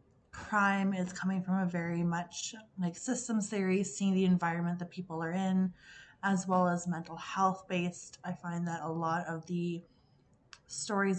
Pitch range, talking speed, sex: 175-205 Hz, 165 wpm, female